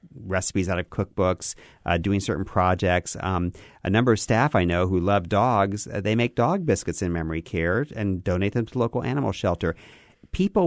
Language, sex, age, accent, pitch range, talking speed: English, male, 40-59, American, 85-110 Hz, 190 wpm